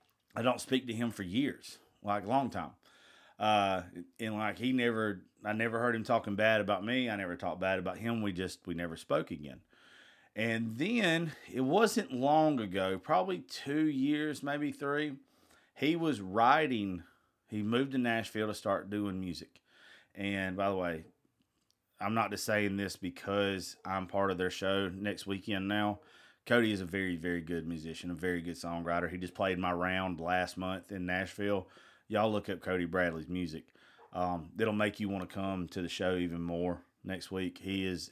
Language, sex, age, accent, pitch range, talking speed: English, male, 30-49, American, 90-115 Hz, 185 wpm